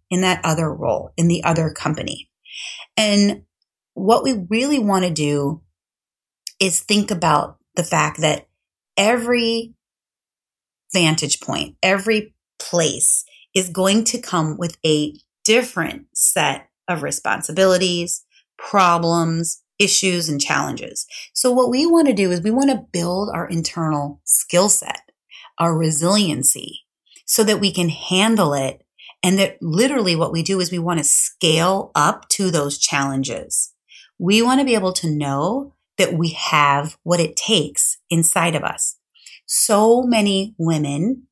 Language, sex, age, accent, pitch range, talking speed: English, female, 30-49, American, 160-210 Hz, 135 wpm